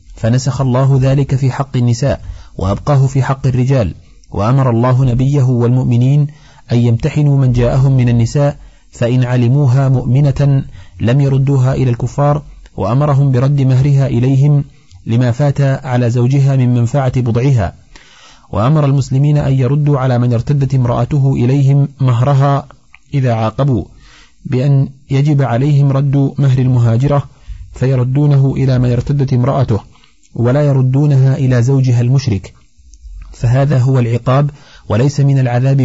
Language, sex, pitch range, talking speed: Arabic, male, 120-140 Hz, 120 wpm